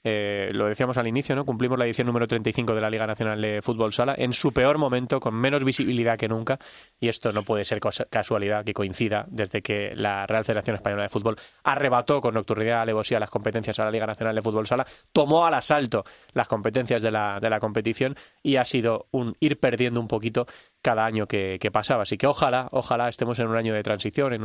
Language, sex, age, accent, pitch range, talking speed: Spanish, male, 20-39, Spanish, 110-130 Hz, 225 wpm